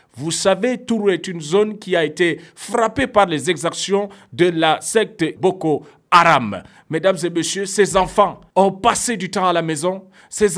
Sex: male